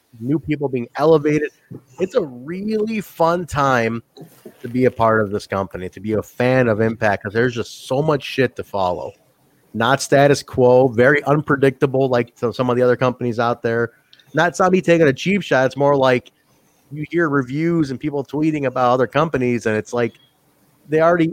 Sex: male